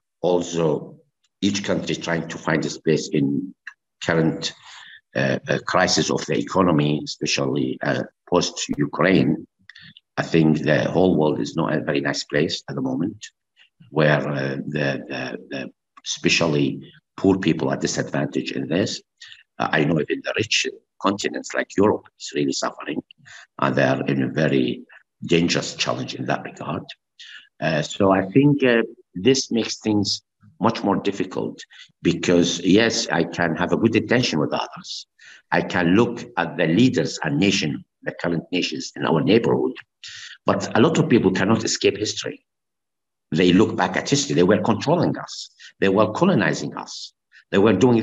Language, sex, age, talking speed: English, male, 50-69, 160 wpm